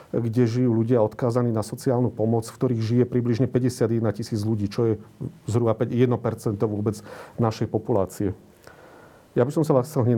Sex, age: male, 40-59